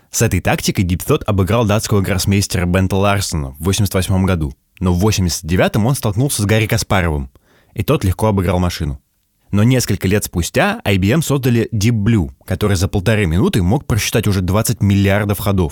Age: 20-39